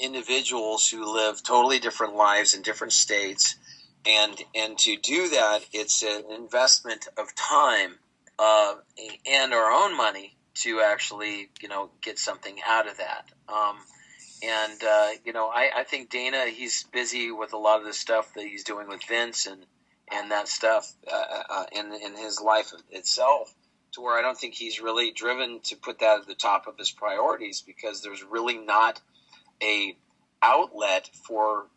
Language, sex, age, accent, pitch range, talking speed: English, male, 40-59, American, 105-125 Hz, 170 wpm